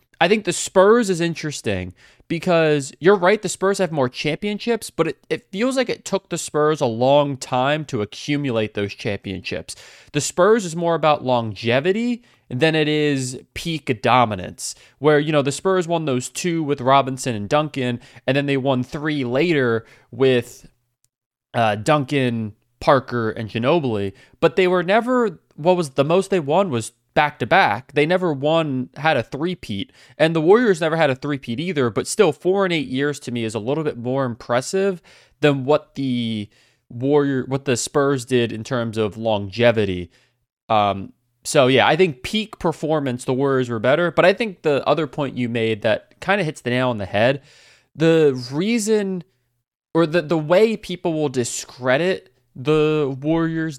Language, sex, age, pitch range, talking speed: English, male, 20-39, 125-165 Hz, 175 wpm